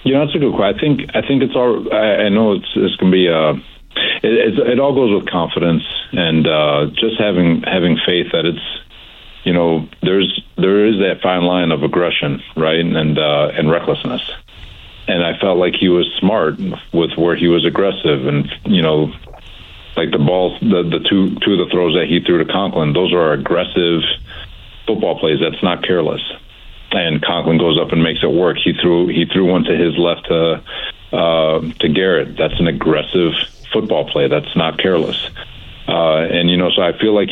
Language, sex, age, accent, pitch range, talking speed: English, male, 50-69, American, 80-90 Hz, 205 wpm